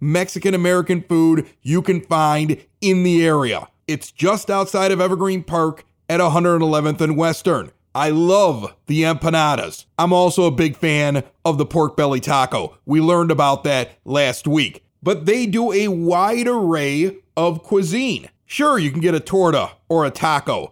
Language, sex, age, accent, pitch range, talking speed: English, male, 40-59, American, 120-185 Hz, 160 wpm